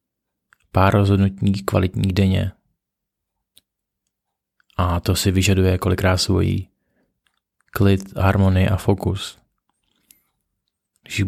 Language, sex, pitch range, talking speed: Czech, male, 95-100 Hz, 80 wpm